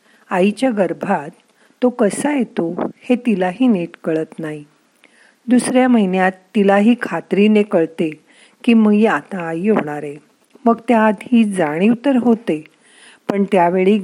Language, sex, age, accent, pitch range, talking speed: Marathi, female, 50-69, native, 175-235 Hz, 120 wpm